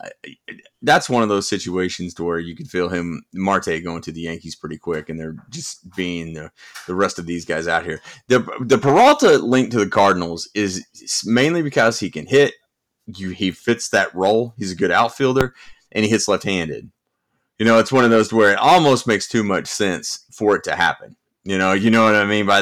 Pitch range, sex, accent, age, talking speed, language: 95-120 Hz, male, American, 30-49, 220 wpm, English